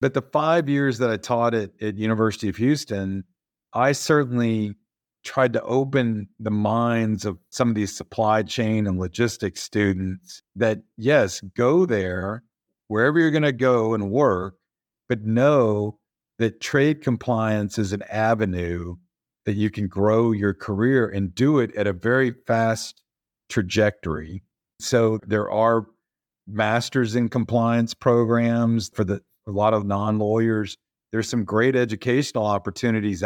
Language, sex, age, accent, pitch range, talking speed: English, male, 50-69, American, 100-115 Hz, 145 wpm